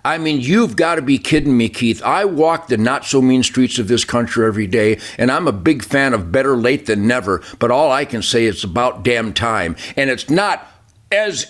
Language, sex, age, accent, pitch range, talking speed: English, male, 50-69, American, 120-185 Hz, 235 wpm